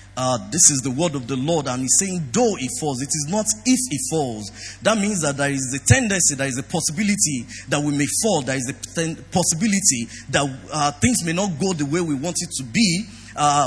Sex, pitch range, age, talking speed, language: male, 125-175 Hz, 30-49, 240 wpm, English